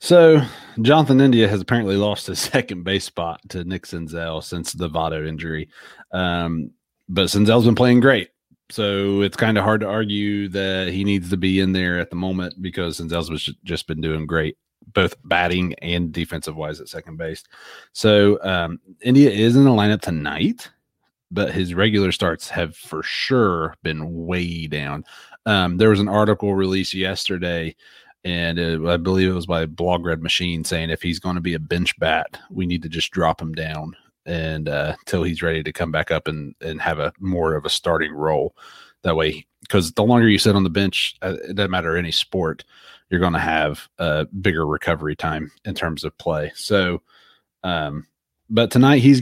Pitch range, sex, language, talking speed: 85-105 Hz, male, English, 185 wpm